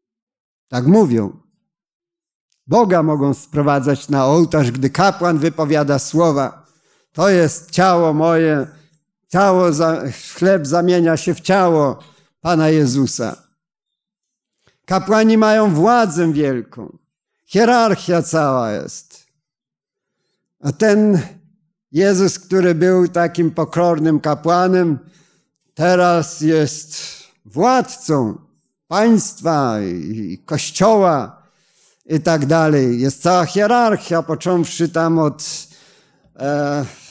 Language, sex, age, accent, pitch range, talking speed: Polish, male, 50-69, native, 150-185 Hz, 85 wpm